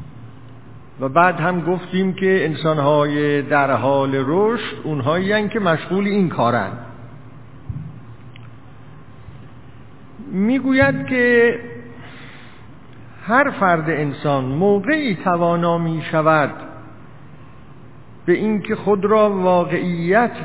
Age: 50-69